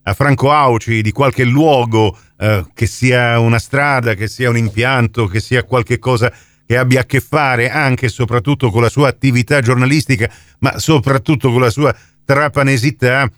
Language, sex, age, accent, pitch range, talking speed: Italian, male, 50-69, native, 105-130 Hz, 170 wpm